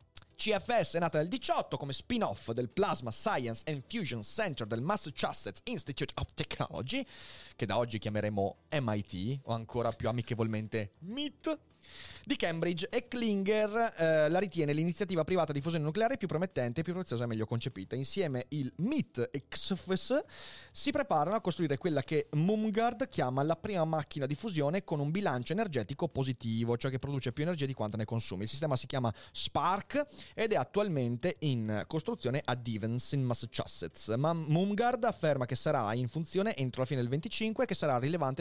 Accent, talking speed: native, 170 wpm